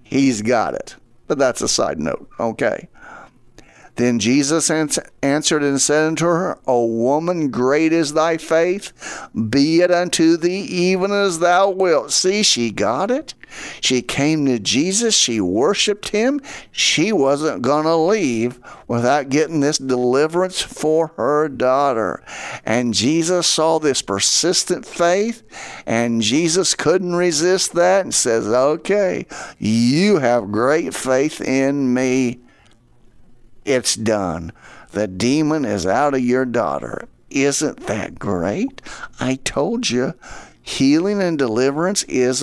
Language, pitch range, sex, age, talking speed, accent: English, 125-180 Hz, male, 50-69, 130 wpm, American